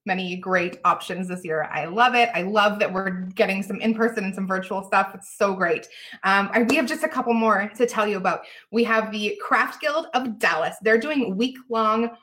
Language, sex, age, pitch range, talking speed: English, female, 20-39, 185-240 Hz, 210 wpm